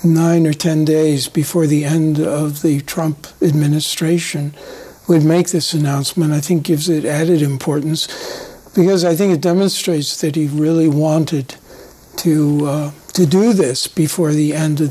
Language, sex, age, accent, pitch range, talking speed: English, male, 60-79, American, 150-175 Hz, 155 wpm